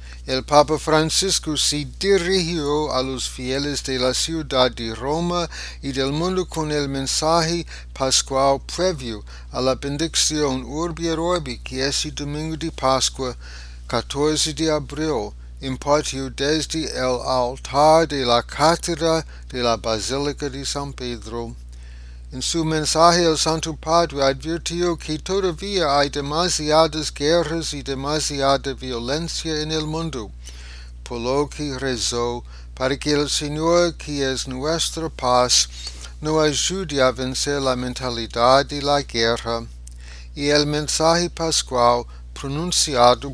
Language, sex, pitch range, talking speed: English, male, 125-160 Hz, 125 wpm